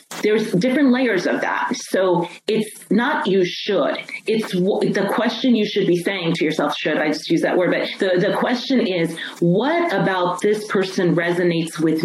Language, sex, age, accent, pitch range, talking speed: English, female, 30-49, American, 175-220 Hz, 185 wpm